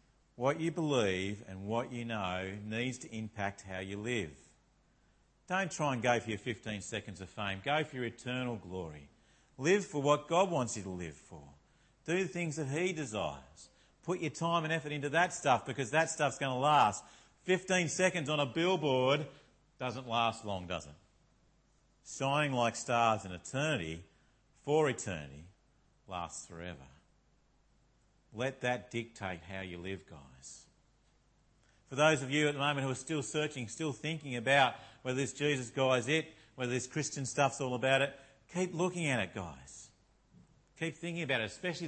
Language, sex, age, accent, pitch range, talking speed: English, male, 50-69, Australian, 105-150 Hz, 170 wpm